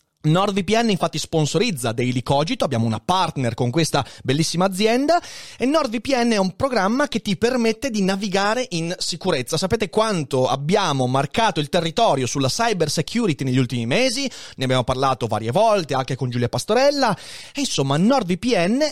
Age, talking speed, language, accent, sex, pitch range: 30-49, 150 wpm, Italian, native, male, 130-215 Hz